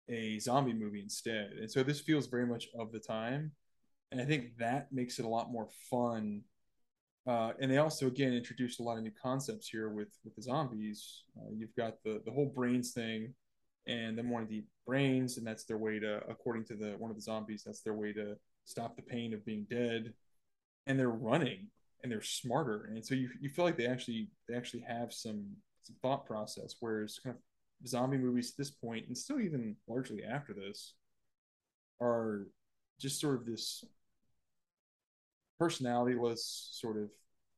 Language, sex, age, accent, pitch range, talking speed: English, male, 20-39, American, 110-130 Hz, 190 wpm